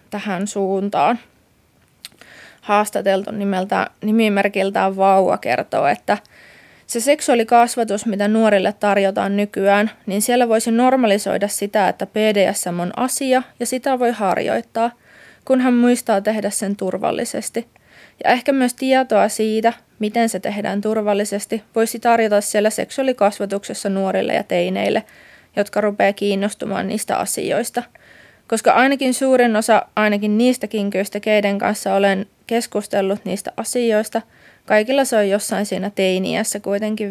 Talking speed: 120 wpm